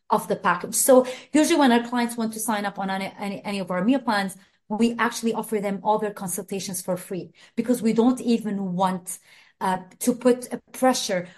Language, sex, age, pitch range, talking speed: English, female, 30-49, 195-245 Hz, 200 wpm